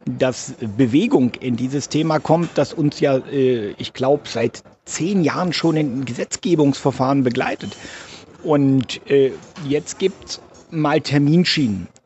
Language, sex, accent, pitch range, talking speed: German, male, German, 130-165 Hz, 120 wpm